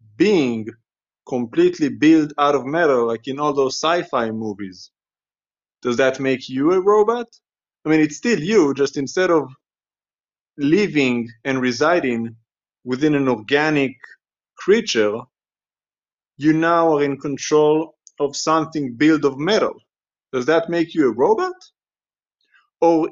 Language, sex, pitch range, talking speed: English, male, 130-170 Hz, 130 wpm